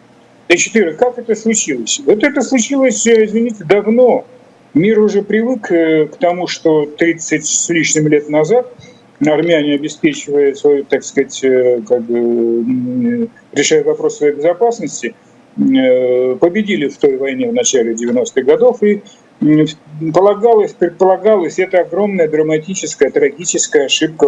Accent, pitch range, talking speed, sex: native, 140-235 Hz, 120 wpm, male